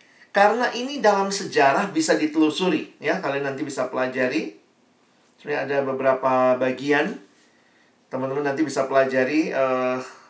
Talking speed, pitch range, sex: 115 wpm, 135-165 Hz, male